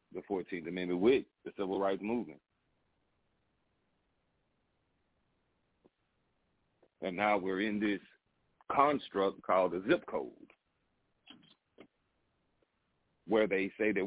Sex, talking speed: male, 95 wpm